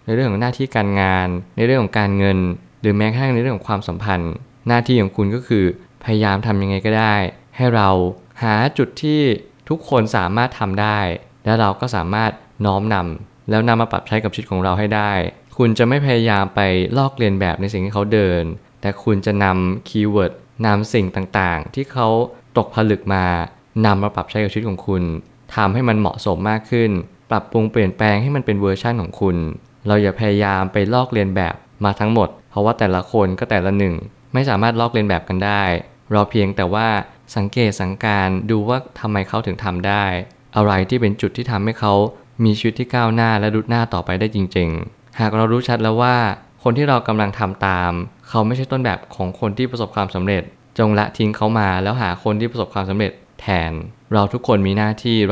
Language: Thai